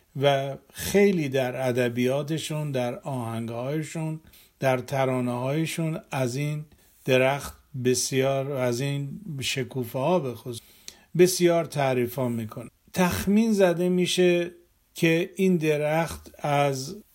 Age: 50-69